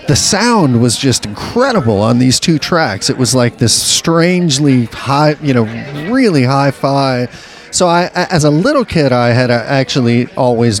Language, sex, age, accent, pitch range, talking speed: English, male, 40-59, American, 120-150 Hz, 160 wpm